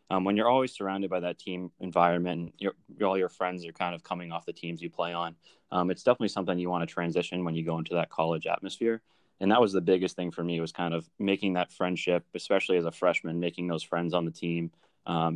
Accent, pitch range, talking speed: American, 85-95 Hz, 245 wpm